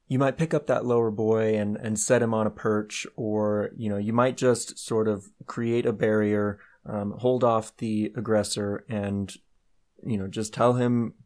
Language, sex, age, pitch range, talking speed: English, male, 20-39, 105-120 Hz, 190 wpm